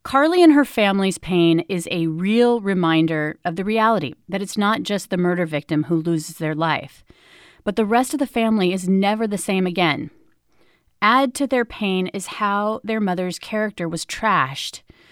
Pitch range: 175-220 Hz